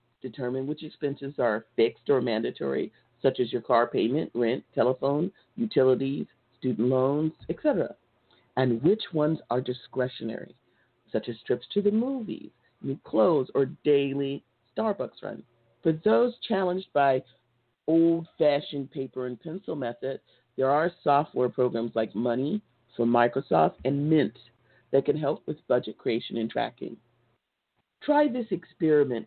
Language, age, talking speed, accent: English, 50-69, 135 wpm, American